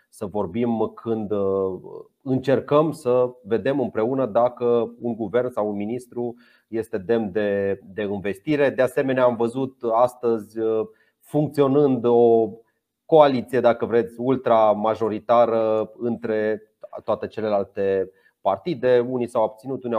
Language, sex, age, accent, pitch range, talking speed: Romanian, male, 30-49, native, 110-130 Hz, 110 wpm